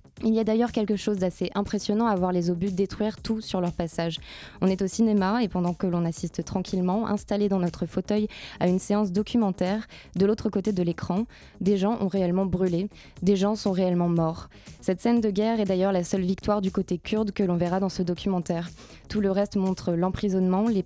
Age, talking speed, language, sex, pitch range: 20-39, 215 wpm, French, female, 180-200 Hz